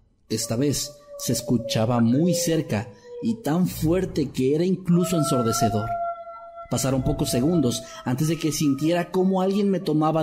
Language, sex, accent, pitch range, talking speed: Spanish, male, Mexican, 115-150 Hz, 140 wpm